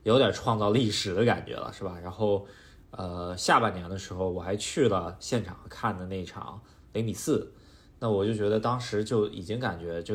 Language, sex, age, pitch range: Chinese, male, 20-39, 95-115 Hz